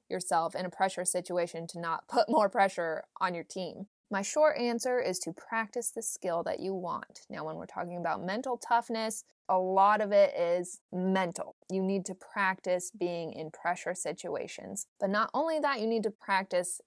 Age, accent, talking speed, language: 20-39, American, 190 wpm, English